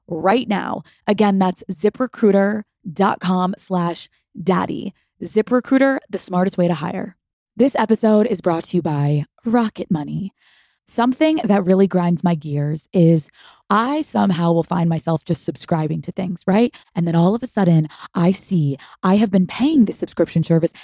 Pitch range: 180-225 Hz